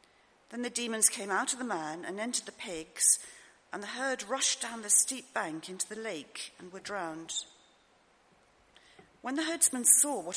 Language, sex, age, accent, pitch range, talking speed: English, female, 50-69, British, 190-275 Hz, 180 wpm